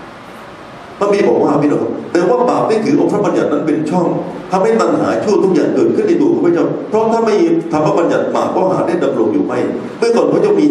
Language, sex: Thai, male